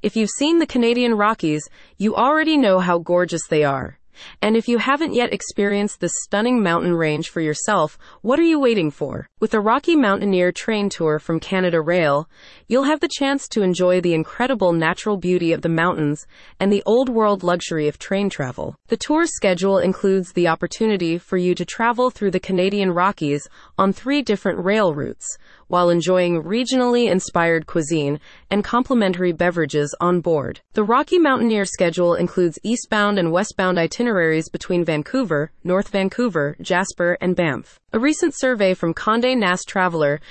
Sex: female